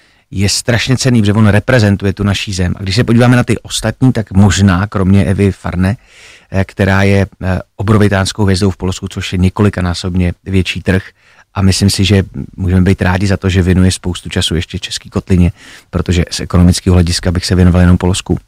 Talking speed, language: 185 wpm, Czech